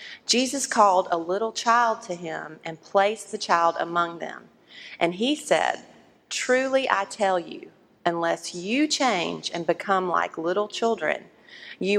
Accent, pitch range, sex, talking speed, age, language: American, 175-220 Hz, female, 145 wpm, 40-59, English